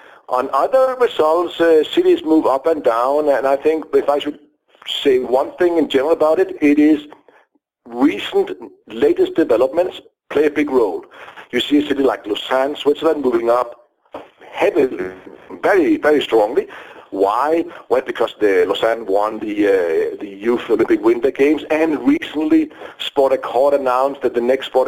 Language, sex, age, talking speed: English, male, 50-69, 160 wpm